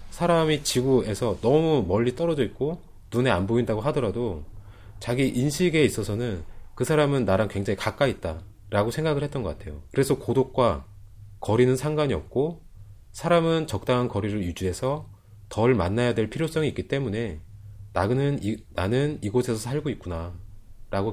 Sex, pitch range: male, 100-135 Hz